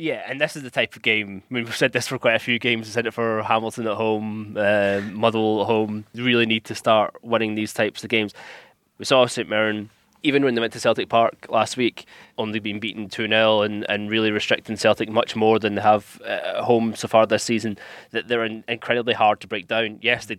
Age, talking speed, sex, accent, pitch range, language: 20-39, 240 wpm, male, British, 105-115 Hz, English